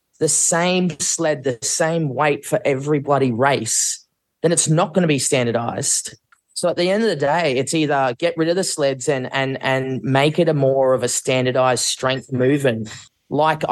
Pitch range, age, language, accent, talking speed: 130-160 Hz, 20-39, English, Australian, 195 wpm